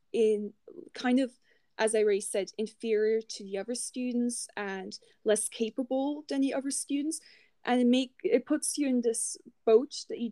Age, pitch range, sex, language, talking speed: 20-39, 215-250 Hz, female, English, 170 wpm